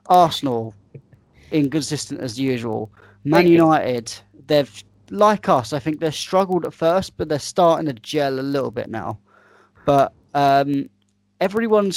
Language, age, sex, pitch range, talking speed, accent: English, 20-39, male, 110-150 Hz, 135 wpm, British